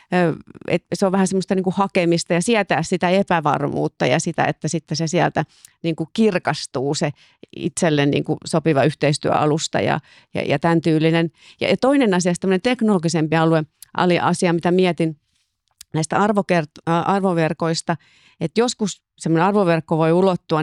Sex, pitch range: female, 160-190 Hz